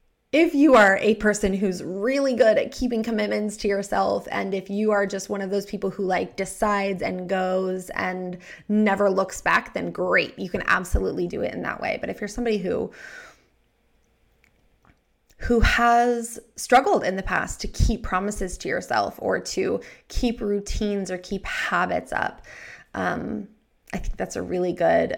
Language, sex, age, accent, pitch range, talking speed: English, female, 20-39, American, 180-225 Hz, 170 wpm